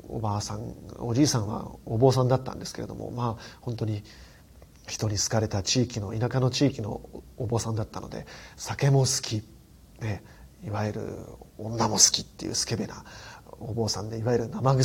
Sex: male